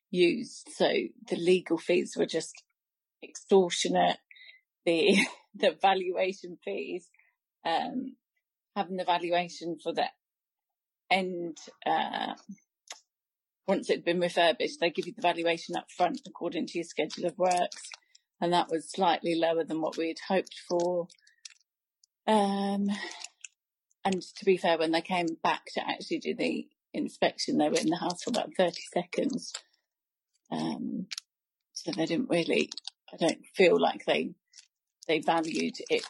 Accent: British